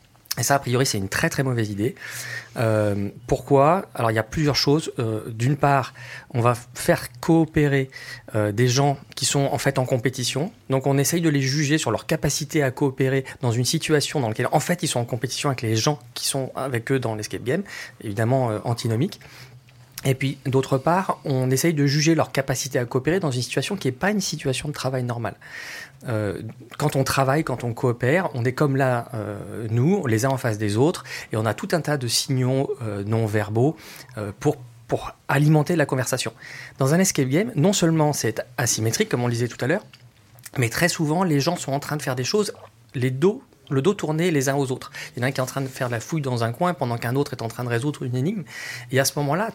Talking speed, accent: 235 wpm, French